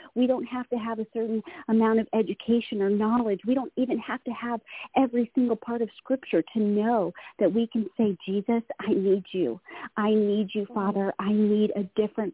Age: 40-59